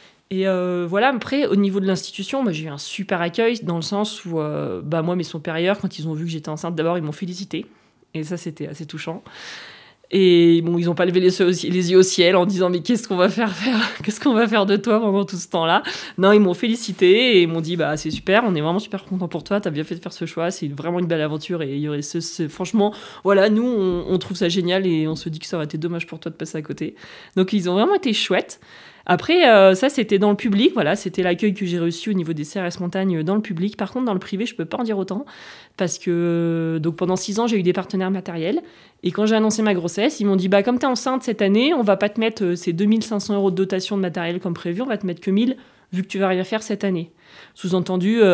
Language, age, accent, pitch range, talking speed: French, 20-39, French, 170-205 Hz, 285 wpm